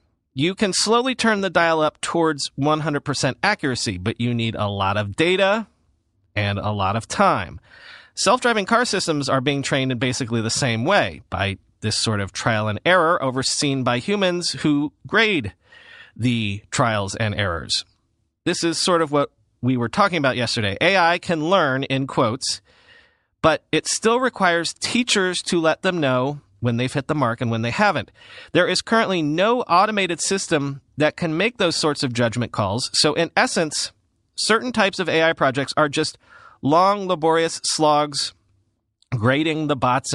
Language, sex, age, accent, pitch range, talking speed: English, male, 40-59, American, 115-175 Hz, 165 wpm